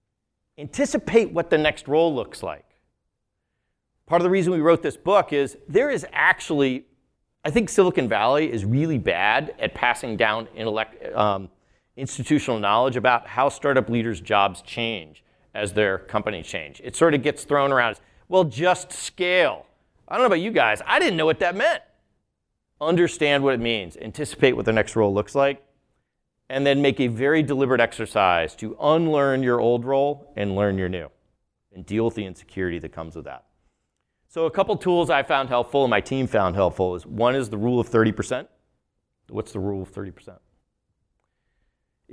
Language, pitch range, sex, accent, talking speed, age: English, 105-155 Hz, male, American, 180 wpm, 40-59